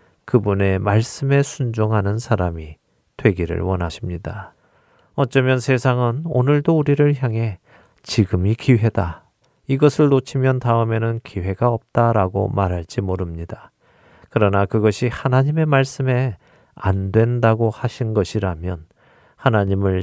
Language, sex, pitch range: Korean, male, 95-130 Hz